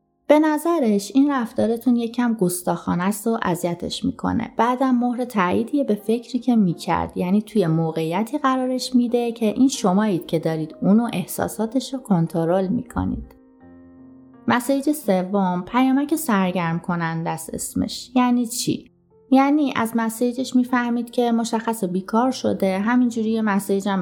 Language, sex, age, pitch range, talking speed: Persian, female, 30-49, 185-250 Hz, 125 wpm